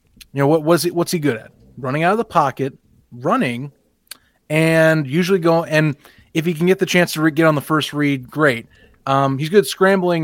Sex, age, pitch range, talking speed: male, 30-49, 125-165 Hz, 225 wpm